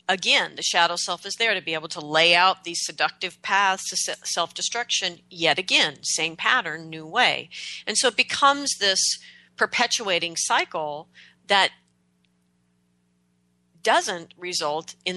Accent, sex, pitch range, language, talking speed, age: American, female, 150-210 Hz, English, 135 wpm, 40-59